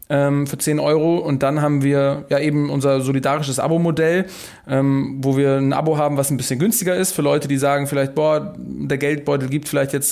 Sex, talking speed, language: male, 195 wpm, German